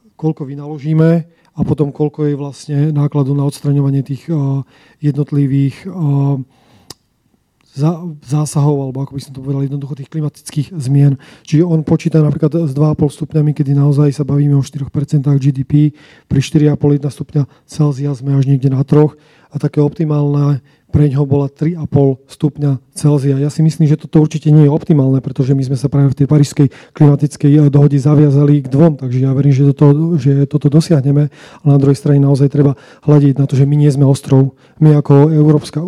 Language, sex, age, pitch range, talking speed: Slovak, male, 30-49, 140-155 Hz, 170 wpm